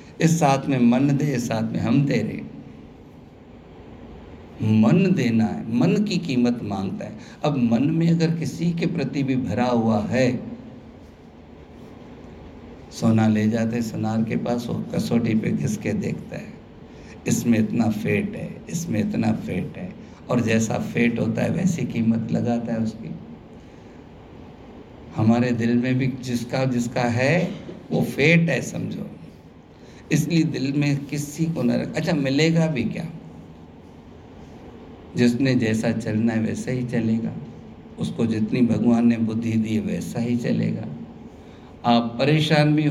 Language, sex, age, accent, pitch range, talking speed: Hindi, male, 50-69, native, 115-150 Hz, 140 wpm